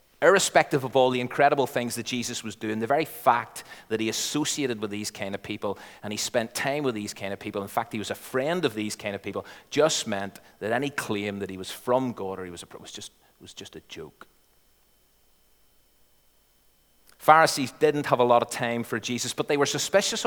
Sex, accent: male, British